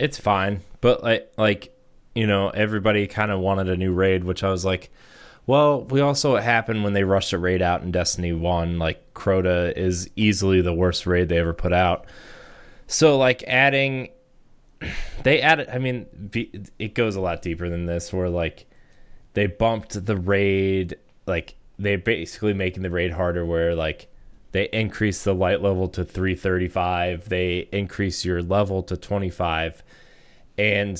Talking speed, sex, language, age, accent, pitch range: 165 wpm, male, English, 20-39, American, 90-105 Hz